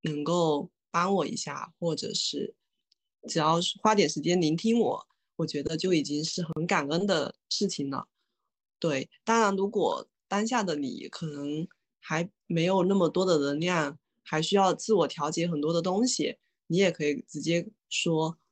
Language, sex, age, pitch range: Chinese, female, 20-39, 155-190 Hz